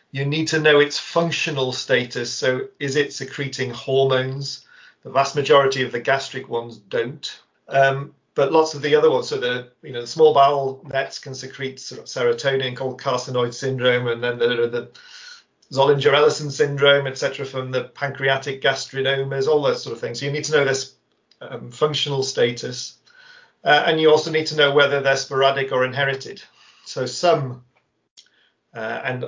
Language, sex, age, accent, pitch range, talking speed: English, male, 40-59, British, 130-155 Hz, 175 wpm